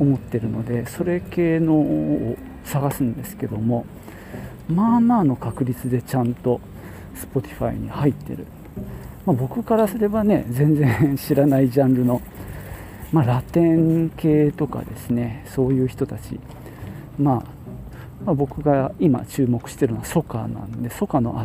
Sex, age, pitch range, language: male, 40-59, 115-150 Hz, Japanese